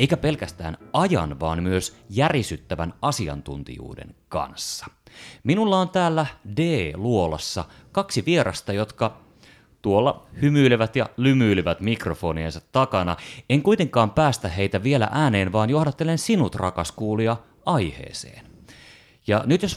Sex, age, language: male, 30-49, Finnish